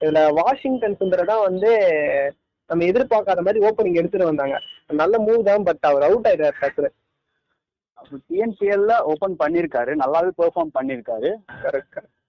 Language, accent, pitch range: Tamil, native, 155-220 Hz